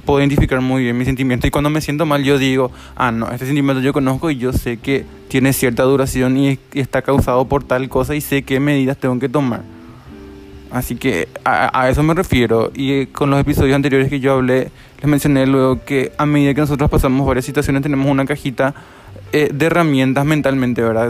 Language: Spanish